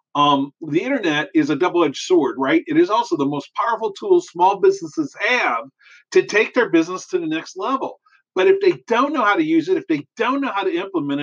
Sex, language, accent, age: male, English, American, 40-59